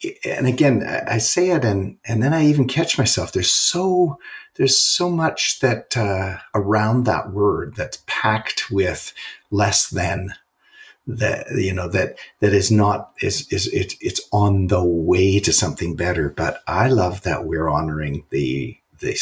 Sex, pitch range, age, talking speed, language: male, 95-125 Hz, 50-69, 160 wpm, English